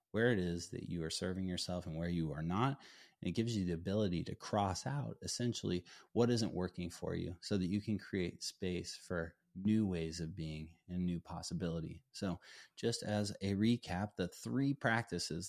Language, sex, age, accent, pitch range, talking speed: English, male, 30-49, American, 85-105 Hz, 195 wpm